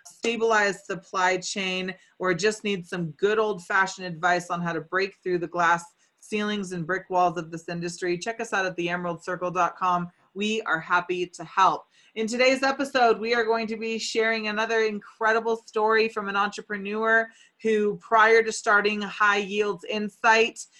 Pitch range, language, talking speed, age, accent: 180-220 Hz, English, 160 wpm, 20-39, American